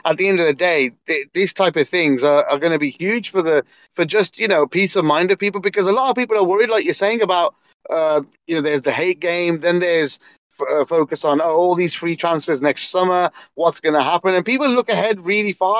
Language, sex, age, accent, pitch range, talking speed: English, male, 30-49, British, 155-205 Hz, 260 wpm